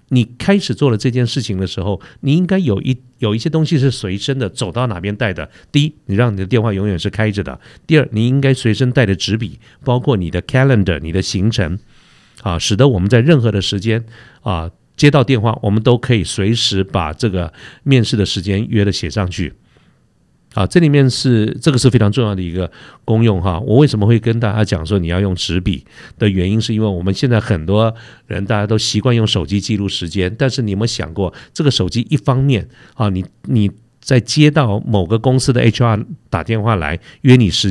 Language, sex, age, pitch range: Chinese, male, 50-69, 100-125 Hz